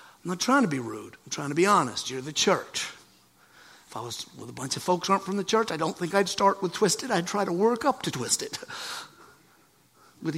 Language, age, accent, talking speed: English, 50-69, American, 245 wpm